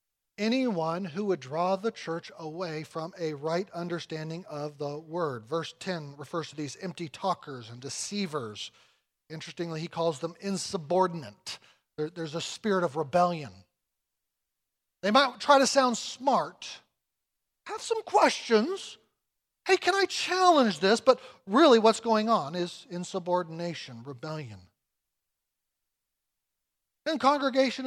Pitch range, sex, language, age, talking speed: 145-210 Hz, male, English, 40-59, 125 wpm